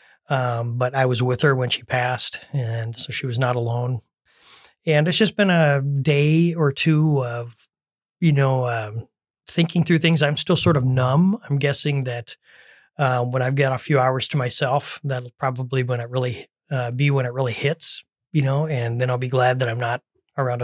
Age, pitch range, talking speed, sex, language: 30-49, 125-150 Hz, 200 wpm, male, English